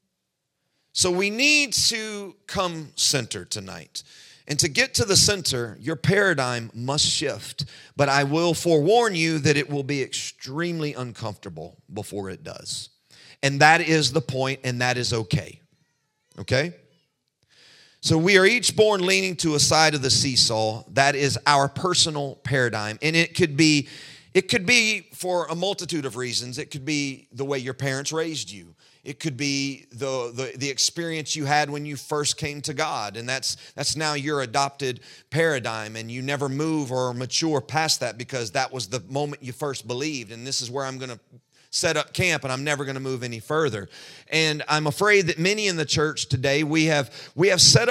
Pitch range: 130-160 Hz